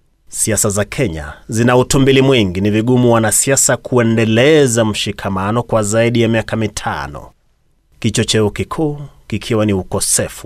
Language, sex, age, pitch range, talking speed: Swahili, male, 30-49, 100-125 Hz, 120 wpm